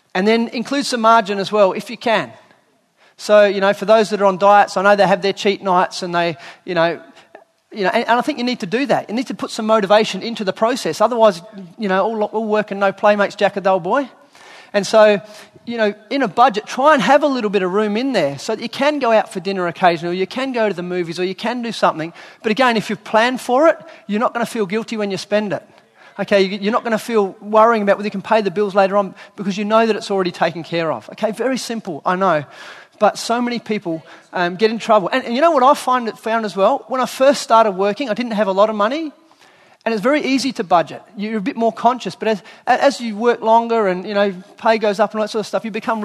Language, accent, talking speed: English, Australian, 275 wpm